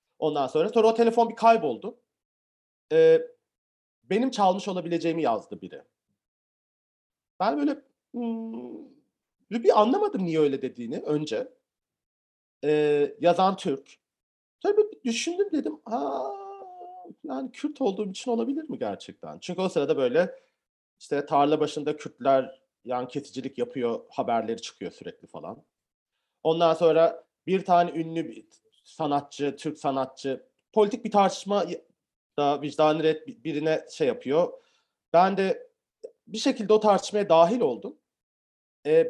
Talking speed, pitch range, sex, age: 120 wpm, 150-235 Hz, male, 40-59